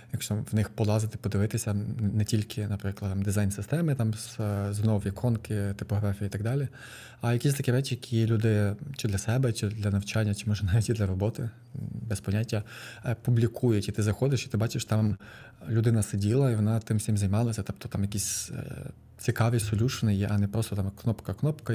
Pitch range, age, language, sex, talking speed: 105-120 Hz, 20-39, Ukrainian, male, 175 wpm